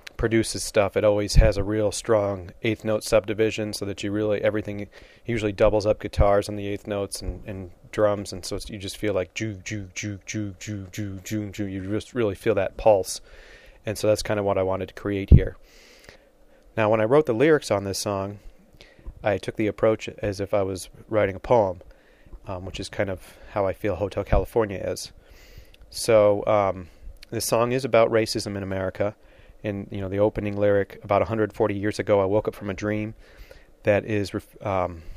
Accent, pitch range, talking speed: American, 100-110 Hz, 205 wpm